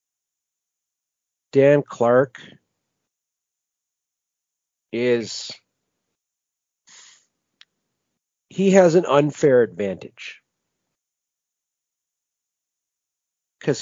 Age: 50-69